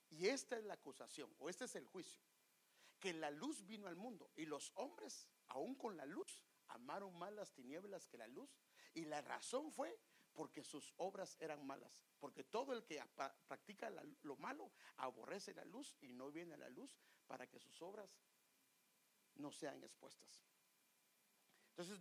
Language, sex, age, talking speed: English, male, 50-69, 170 wpm